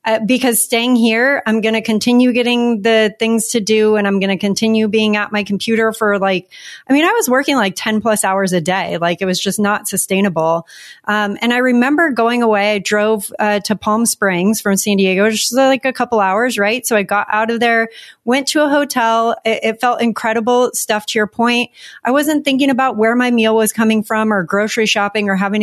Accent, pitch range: American, 205-235 Hz